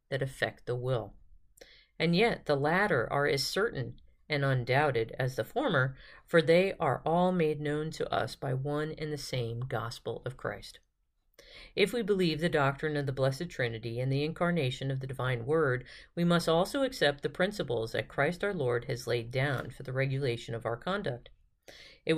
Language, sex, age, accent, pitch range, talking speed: English, female, 50-69, American, 130-165 Hz, 185 wpm